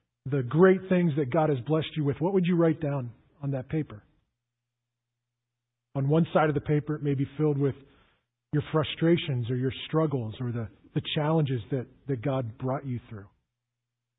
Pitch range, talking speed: 120-185 Hz, 180 wpm